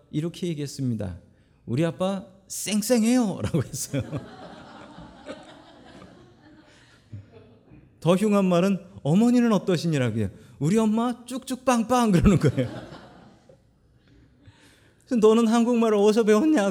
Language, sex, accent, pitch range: Korean, male, native, 120-185 Hz